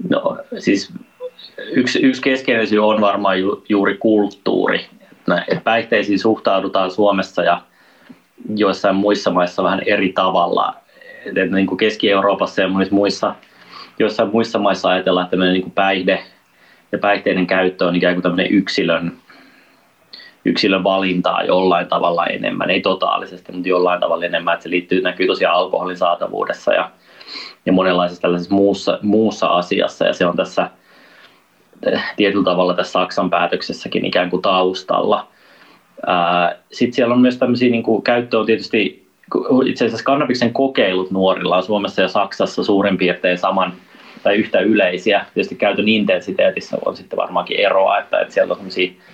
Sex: male